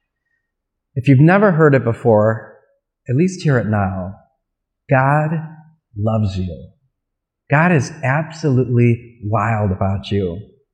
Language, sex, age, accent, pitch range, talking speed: English, male, 30-49, American, 105-140 Hz, 110 wpm